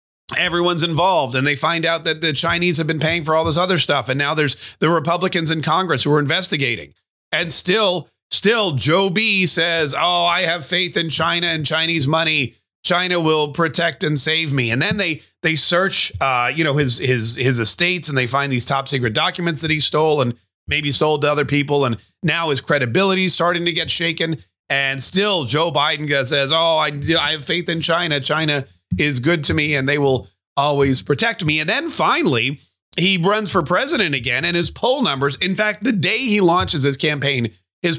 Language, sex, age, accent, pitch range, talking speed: English, male, 30-49, American, 130-170 Hz, 205 wpm